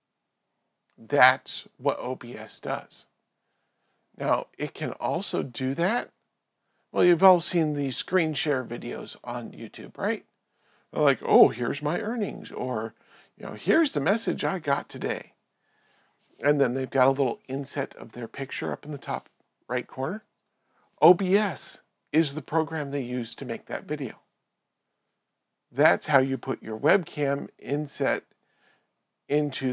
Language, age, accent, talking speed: English, 40-59, American, 140 wpm